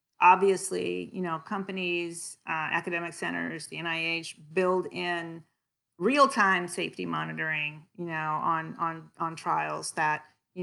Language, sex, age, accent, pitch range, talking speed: English, female, 40-59, American, 160-190 Hz, 125 wpm